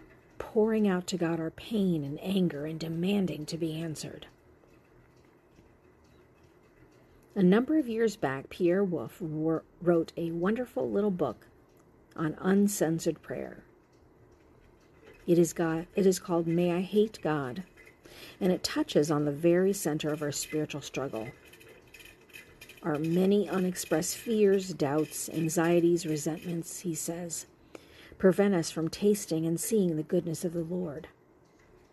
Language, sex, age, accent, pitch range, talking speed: English, female, 50-69, American, 160-195 Hz, 125 wpm